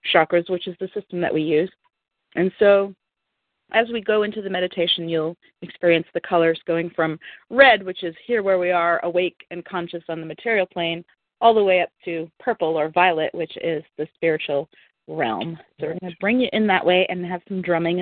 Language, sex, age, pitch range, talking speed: English, female, 40-59, 170-220 Hz, 205 wpm